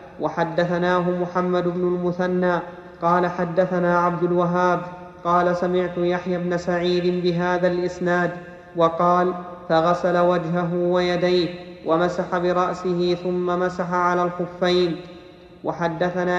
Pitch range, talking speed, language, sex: 175-180 Hz, 95 wpm, Arabic, male